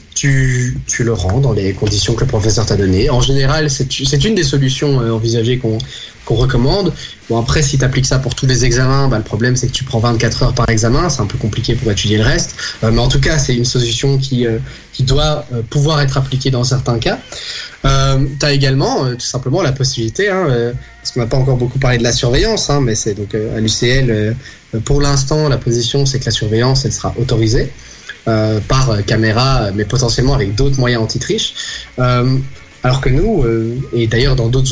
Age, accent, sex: 20-39, French, male